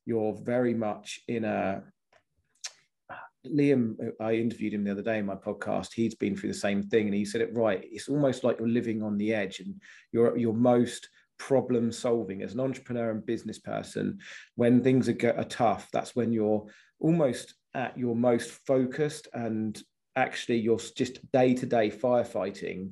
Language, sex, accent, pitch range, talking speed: English, male, British, 115-130 Hz, 175 wpm